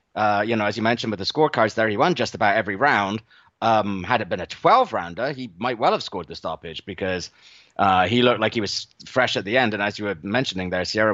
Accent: British